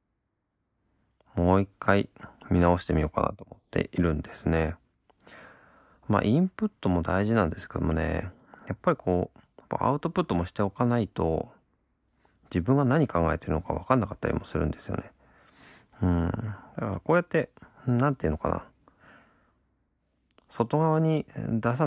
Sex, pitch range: male, 85-115 Hz